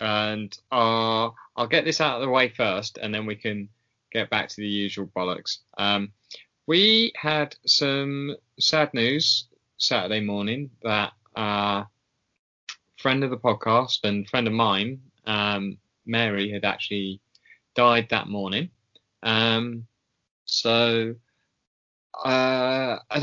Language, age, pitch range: English, 20-39, 100-130 Hz